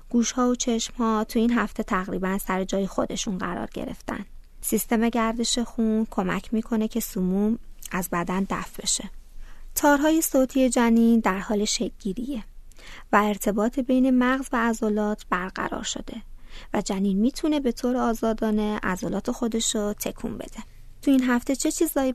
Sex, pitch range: female, 205-245 Hz